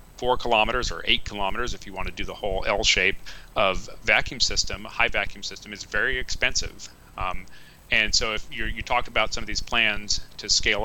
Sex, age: male, 40-59